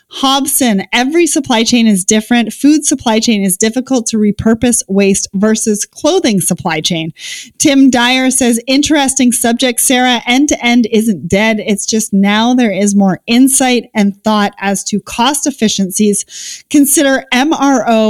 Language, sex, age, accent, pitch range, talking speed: English, female, 30-49, American, 210-270 Hz, 145 wpm